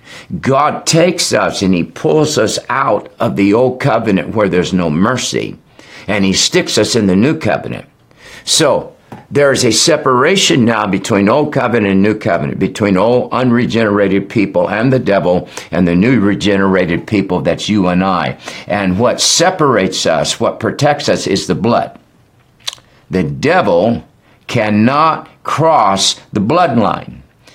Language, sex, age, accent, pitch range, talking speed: English, male, 60-79, American, 95-125 Hz, 150 wpm